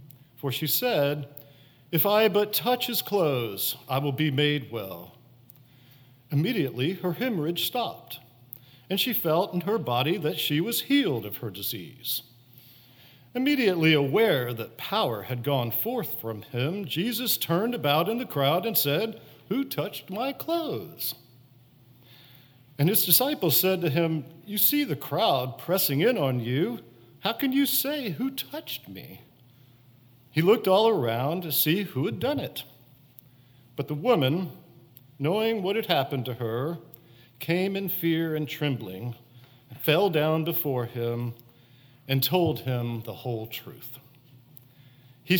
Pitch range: 125-170 Hz